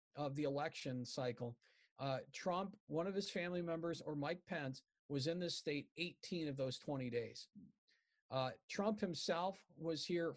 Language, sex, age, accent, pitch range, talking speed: English, male, 50-69, American, 140-175 Hz, 160 wpm